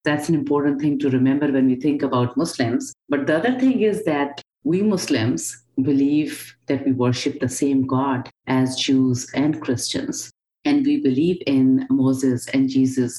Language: English